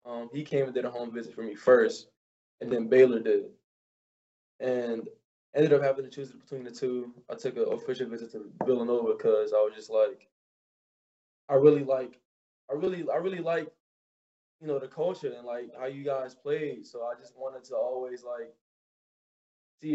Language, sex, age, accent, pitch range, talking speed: English, male, 20-39, American, 120-150 Hz, 185 wpm